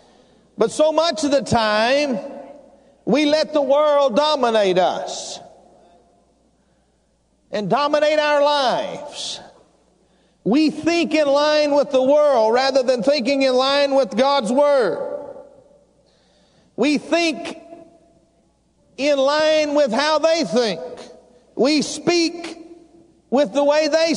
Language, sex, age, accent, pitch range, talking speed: English, male, 50-69, American, 255-295 Hz, 110 wpm